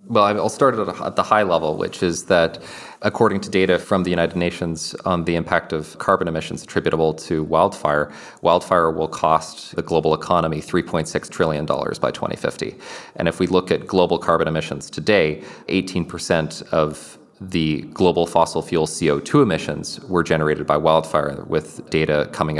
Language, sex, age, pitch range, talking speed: English, male, 30-49, 80-90 Hz, 160 wpm